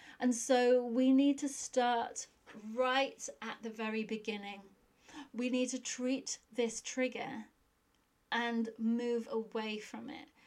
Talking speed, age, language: 125 wpm, 30-49, English